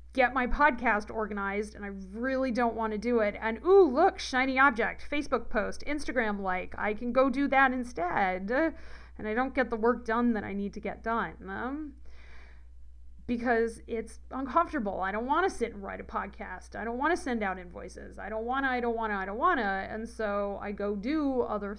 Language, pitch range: English, 200-265 Hz